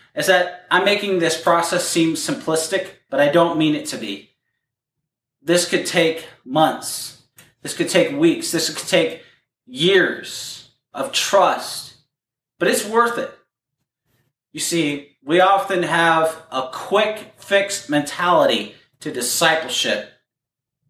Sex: male